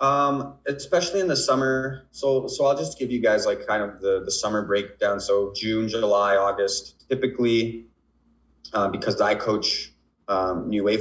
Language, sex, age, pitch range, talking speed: English, male, 20-39, 95-140 Hz, 170 wpm